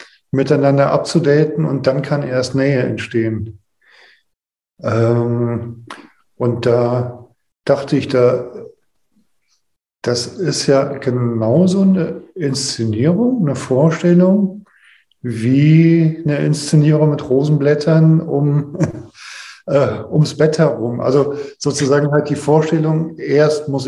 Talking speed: 95 wpm